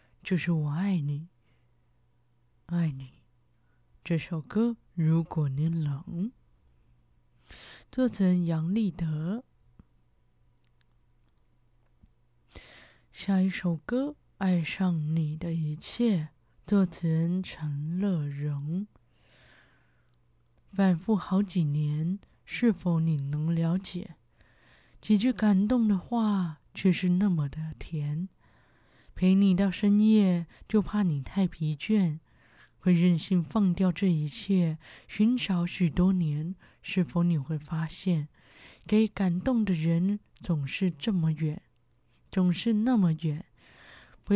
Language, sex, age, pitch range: Chinese, female, 20-39, 155-195 Hz